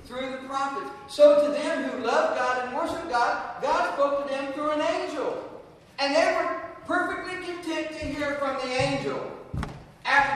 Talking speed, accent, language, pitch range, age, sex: 175 wpm, American, English, 230-310 Hz, 50-69, male